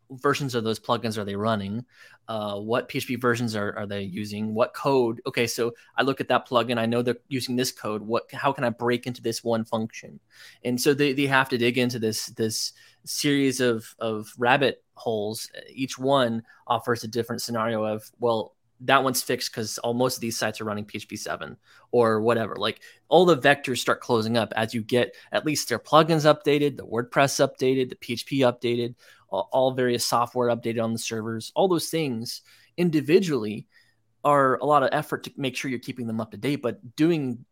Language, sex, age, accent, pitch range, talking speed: English, male, 20-39, American, 115-135 Hz, 200 wpm